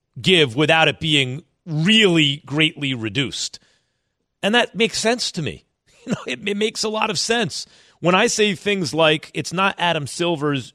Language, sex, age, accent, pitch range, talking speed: English, male, 40-59, American, 140-185 Hz, 175 wpm